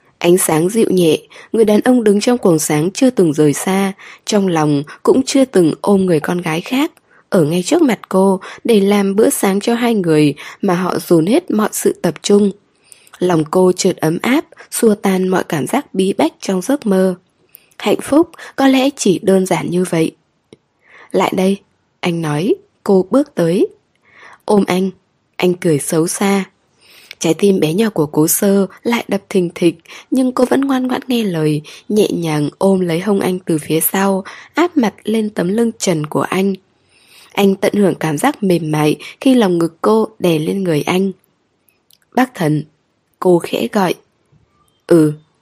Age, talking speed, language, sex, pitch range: 10-29, 180 wpm, Vietnamese, female, 170-225 Hz